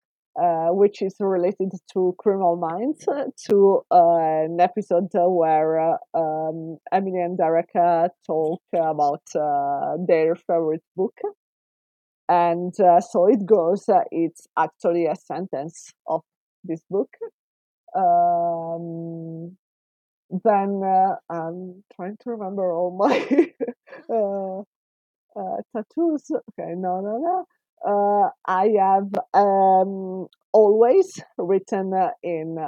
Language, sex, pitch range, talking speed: English, female, 165-215 Hz, 110 wpm